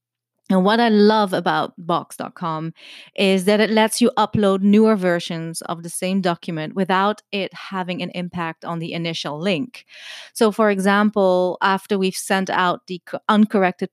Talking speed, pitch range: 155 wpm, 175-210 Hz